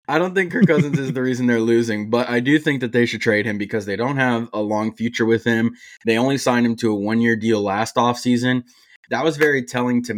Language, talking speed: English, 255 wpm